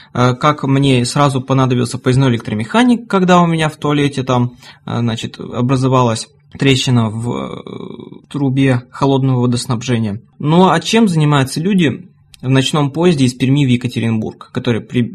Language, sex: Russian, male